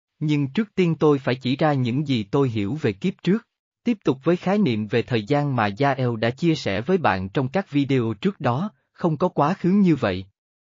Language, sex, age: Vietnamese, male, 20-39